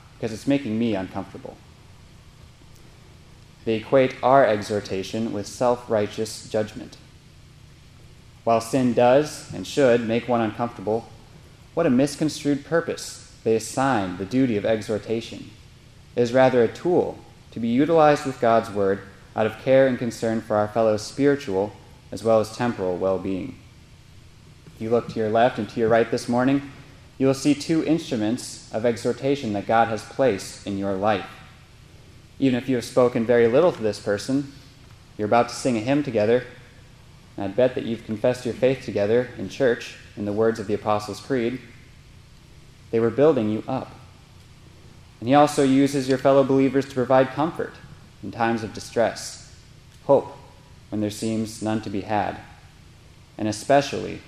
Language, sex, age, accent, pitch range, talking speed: English, male, 20-39, American, 110-130 Hz, 160 wpm